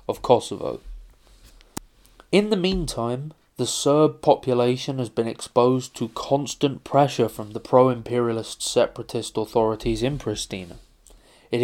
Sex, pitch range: male, 110-140 Hz